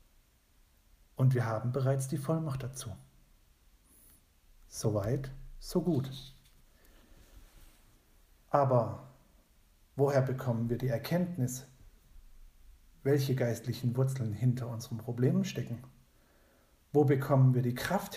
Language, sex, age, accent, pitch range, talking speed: German, male, 50-69, German, 110-135 Hz, 95 wpm